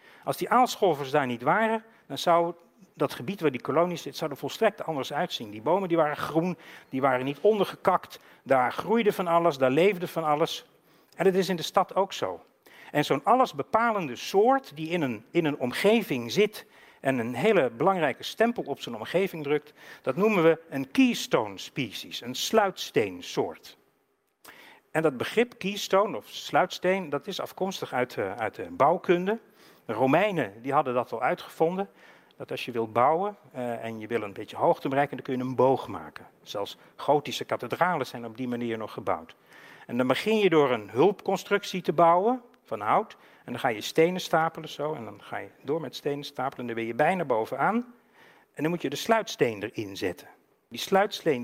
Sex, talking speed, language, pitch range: male, 190 wpm, Dutch, 145-205 Hz